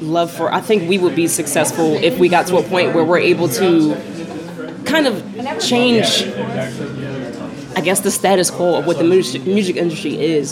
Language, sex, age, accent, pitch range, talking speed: English, female, 20-39, American, 160-195 Hz, 190 wpm